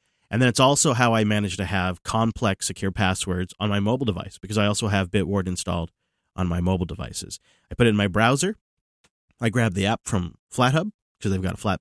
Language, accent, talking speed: English, American, 220 wpm